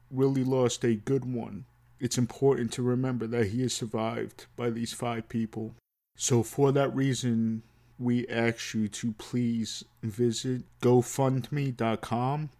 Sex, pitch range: male, 110-125 Hz